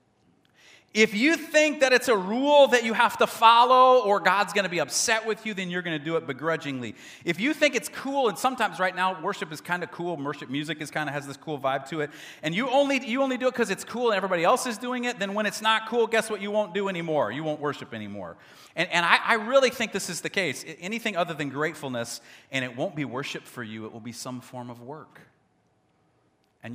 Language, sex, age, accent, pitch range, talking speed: English, male, 40-59, American, 135-205 Hz, 250 wpm